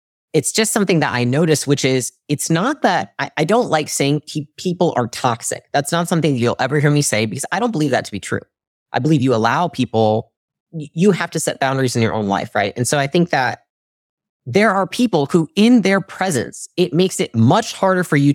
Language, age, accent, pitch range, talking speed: English, 30-49, American, 125-180 Hz, 225 wpm